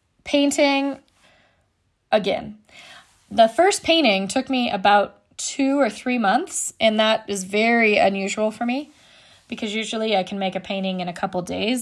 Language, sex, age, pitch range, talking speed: English, female, 20-39, 195-240 Hz, 150 wpm